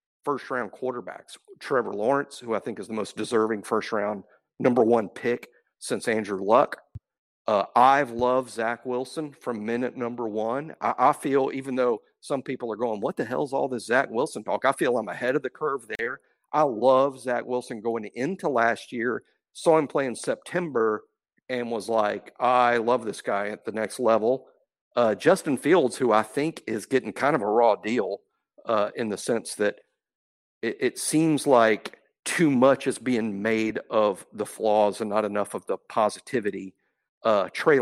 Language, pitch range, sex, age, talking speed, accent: English, 115-145 Hz, male, 50-69, 180 wpm, American